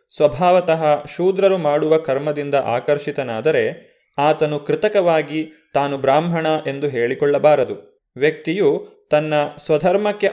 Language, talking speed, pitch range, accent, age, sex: Kannada, 80 wpm, 150-195 Hz, native, 30-49, male